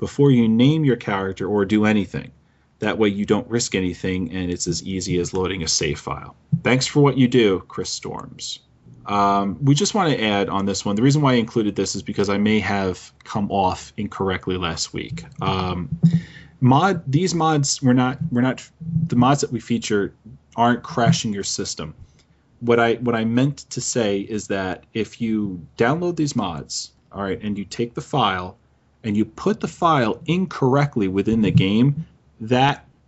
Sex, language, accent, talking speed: male, English, American, 185 wpm